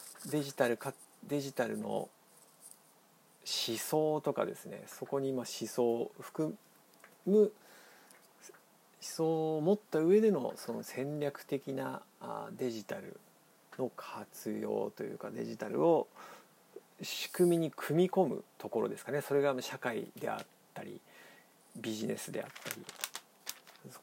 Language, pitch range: Japanese, 130-175 Hz